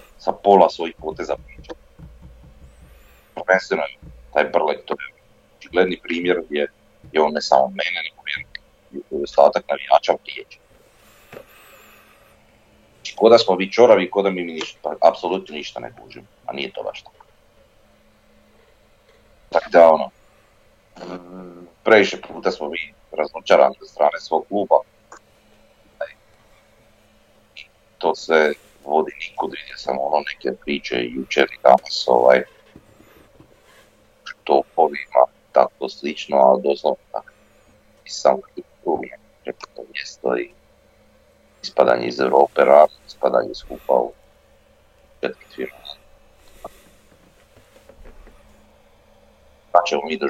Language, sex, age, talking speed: Croatian, male, 40-59, 95 wpm